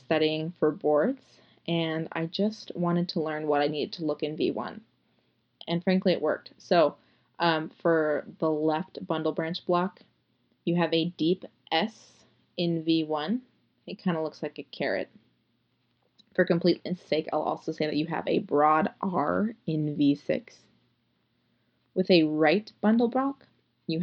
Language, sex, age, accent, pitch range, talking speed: English, female, 20-39, American, 155-195 Hz, 155 wpm